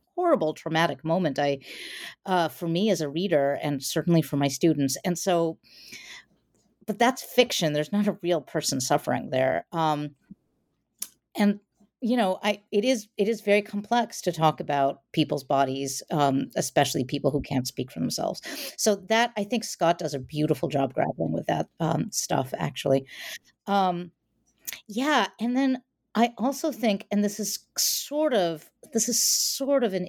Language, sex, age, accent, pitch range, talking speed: English, female, 50-69, American, 155-210 Hz, 165 wpm